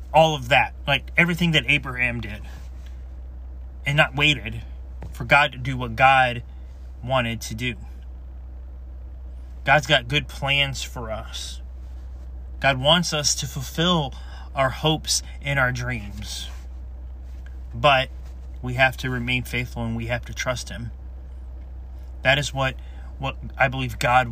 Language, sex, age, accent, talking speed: English, male, 30-49, American, 135 wpm